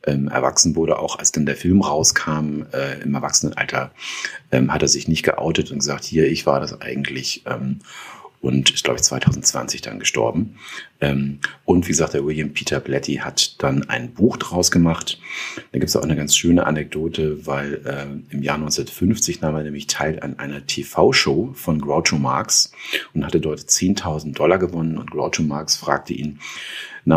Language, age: German, 40-59